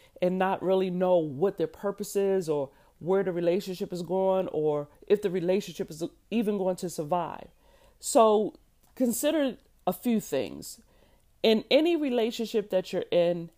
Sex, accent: female, American